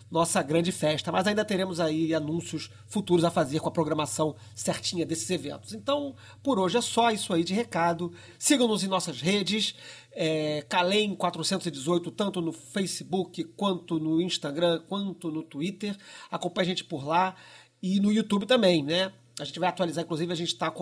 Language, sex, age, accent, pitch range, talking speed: Portuguese, male, 40-59, Brazilian, 160-210 Hz, 165 wpm